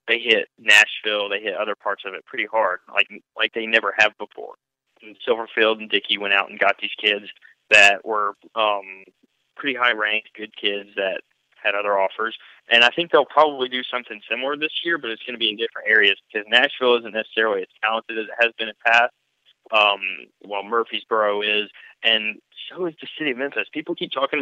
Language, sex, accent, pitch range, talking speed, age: English, male, American, 105-125 Hz, 205 wpm, 20-39